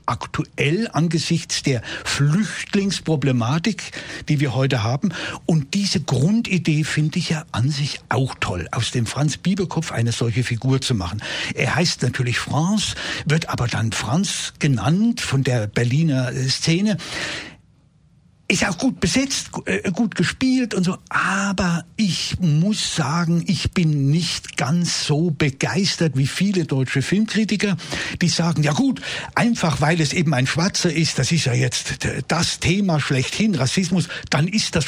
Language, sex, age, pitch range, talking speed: German, male, 60-79, 140-180 Hz, 145 wpm